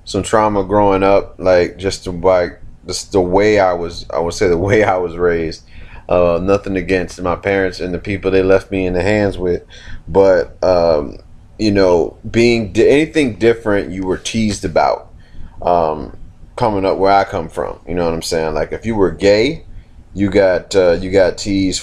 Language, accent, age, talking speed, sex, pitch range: English, American, 30-49, 195 wpm, male, 90-100 Hz